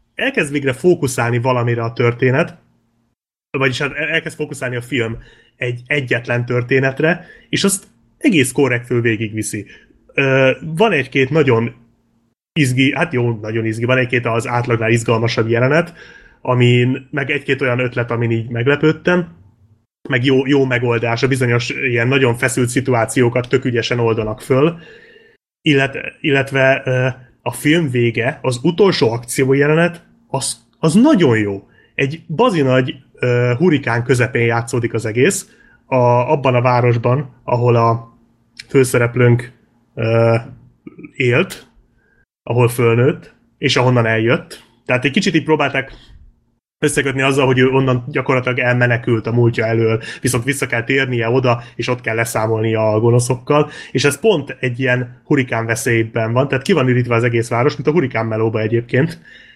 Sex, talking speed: male, 135 wpm